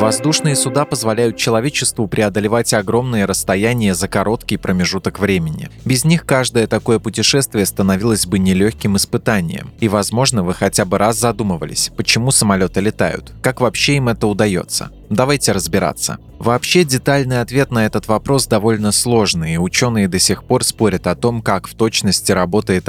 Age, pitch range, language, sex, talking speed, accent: 20-39, 100-115 Hz, Russian, male, 150 wpm, native